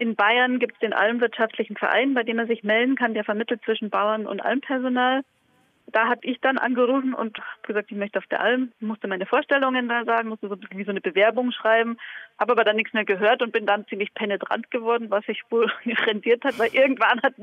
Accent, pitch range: German, 210-245 Hz